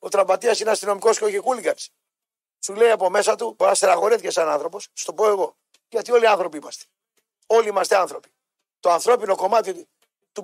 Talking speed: 185 wpm